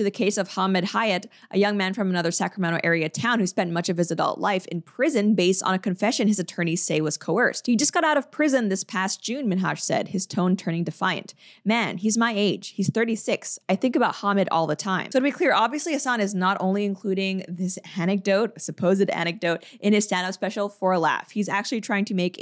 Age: 20-39